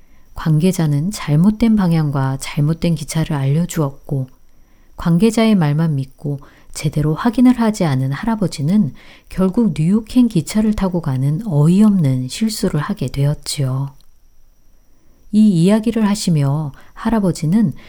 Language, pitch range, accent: Korean, 145-195 Hz, native